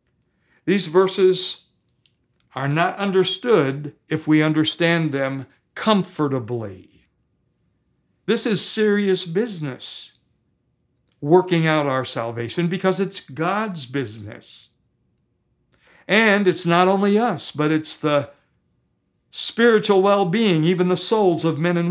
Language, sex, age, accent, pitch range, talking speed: English, male, 60-79, American, 145-195 Hz, 105 wpm